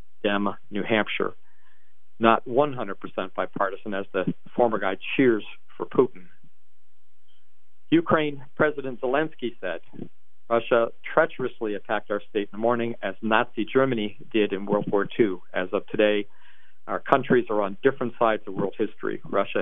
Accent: American